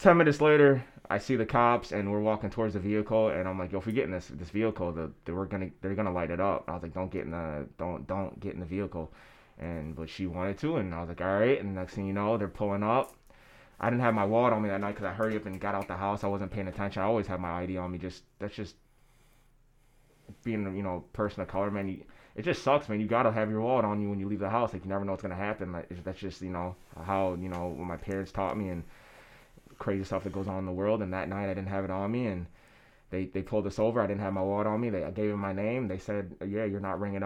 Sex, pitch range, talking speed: male, 95-110 Hz, 295 wpm